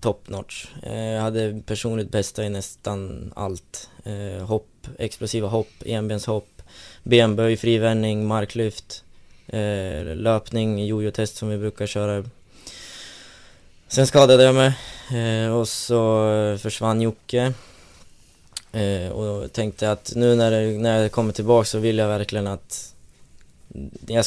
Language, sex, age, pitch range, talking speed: Swedish, male, 20-39, 100-115 Hz, 125 wpm